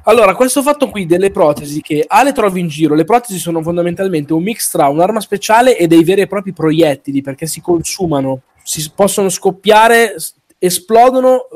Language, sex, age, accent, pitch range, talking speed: Italian, male, 20-39, native, 150-195 Hz, 170 wpm